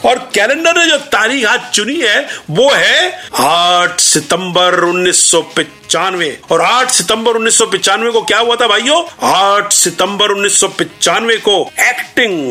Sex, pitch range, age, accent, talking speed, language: male, 190-275 Hz, 50-69, native, 130 wpm, Hindi